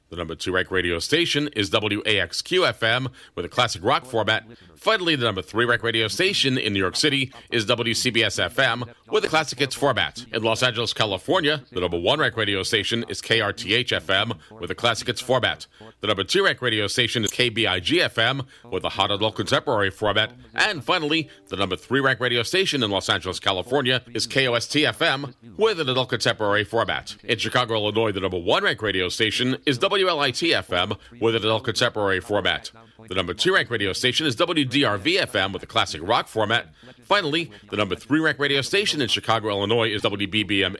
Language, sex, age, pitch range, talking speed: English, male, 40-59, 105-135 Hz, 185 wpm